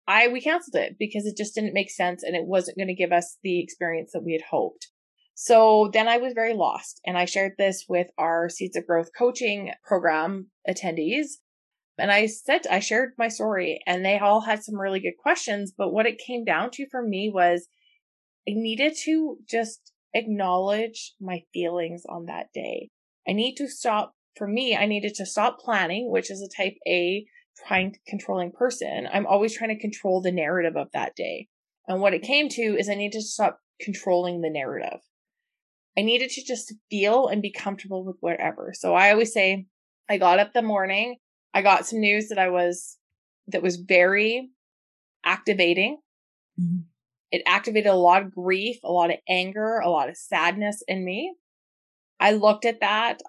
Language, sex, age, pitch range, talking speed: English, female, 20-39, 185-230 Hz, 190 wpm